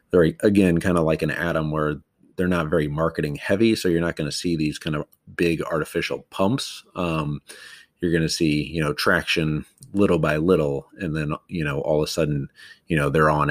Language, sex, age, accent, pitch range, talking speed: English, male, 30-49, American, 80-95 Hz, 215 wpm